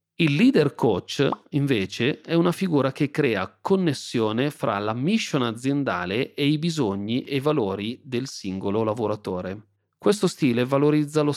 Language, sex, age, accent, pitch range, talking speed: Italian, male, 30-49, native, 105-150 Hz, 145 wpm